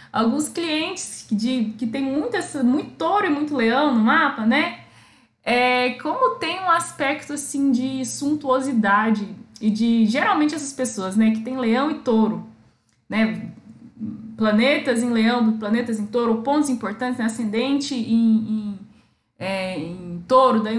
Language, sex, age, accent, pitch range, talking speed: Portuguese, female, 10-29, Brazilian, 225-280 Hz, 150 wpm